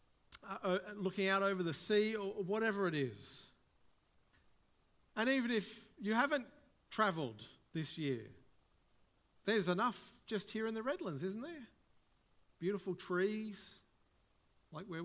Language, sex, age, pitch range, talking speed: English, male, 50-69, 170-210 Hz, 125 wpm